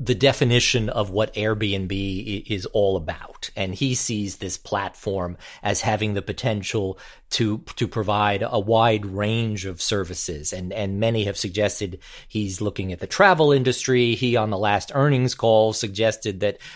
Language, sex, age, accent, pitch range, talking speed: English, male, 40-59, American, 100-125 Hz, 160 wpm